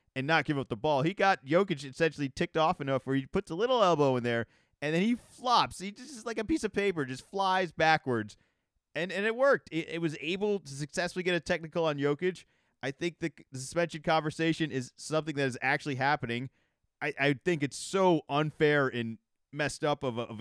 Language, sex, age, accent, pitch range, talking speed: English, male, 30-49, American, 135-180 Hz, 215 wpm